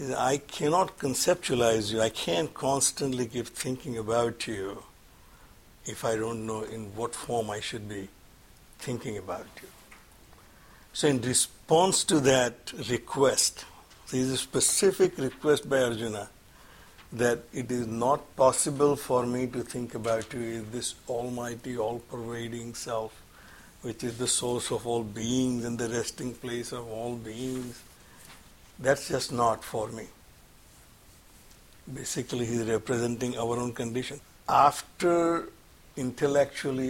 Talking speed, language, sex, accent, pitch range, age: 130 wpm, English, male, Indian, 115-130 Hz, 60-79